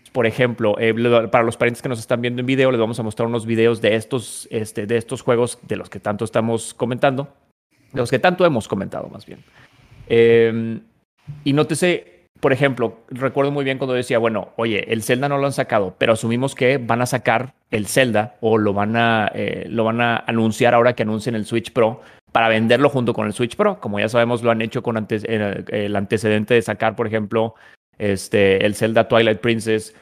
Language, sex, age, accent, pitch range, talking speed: English, male, 30-49, Mexican, 110-135 Hz, 210 wpm